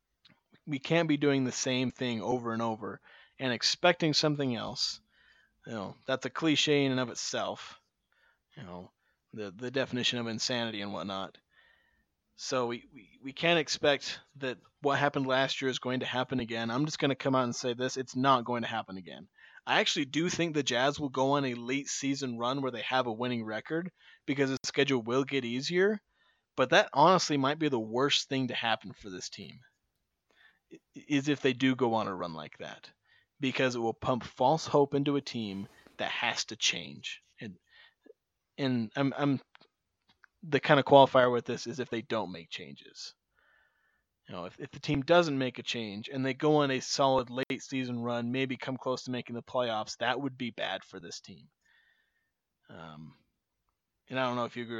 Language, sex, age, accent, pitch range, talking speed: English, male, 30-49, American, 120-140 Hz, 200 wpm